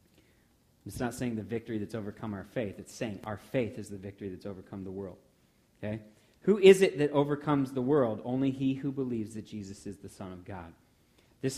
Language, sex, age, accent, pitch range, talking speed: English, male, 30-49, American, 110-140 Hz, 205 wpm